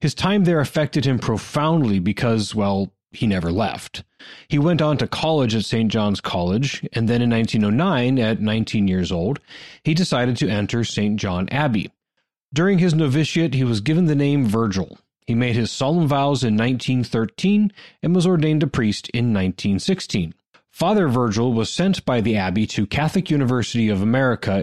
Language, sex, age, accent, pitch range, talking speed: English, male, 30-49, American, 110-155 Hz, 170 wpm